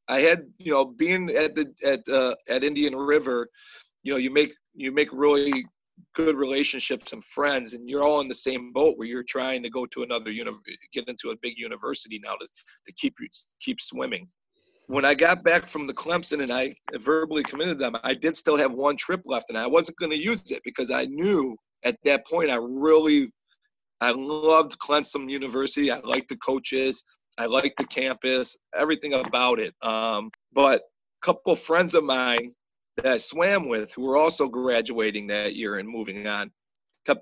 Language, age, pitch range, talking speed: English, 40-59, 125-155 Hz, 200 wpm